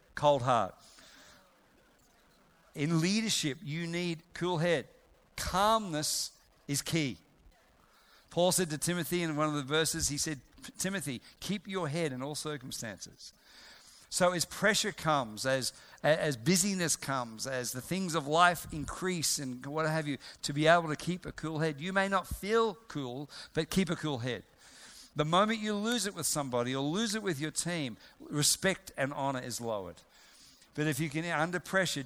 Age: 50-69